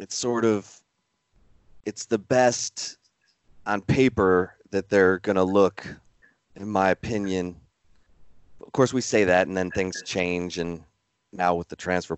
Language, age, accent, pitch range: English, 30-49, American, 90-105 Hz